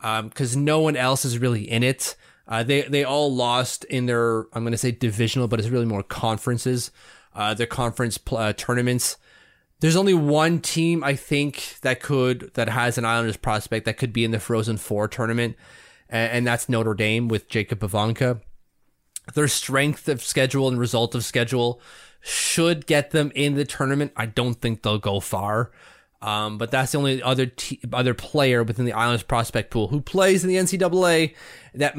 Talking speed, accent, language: 190 wpm, American, English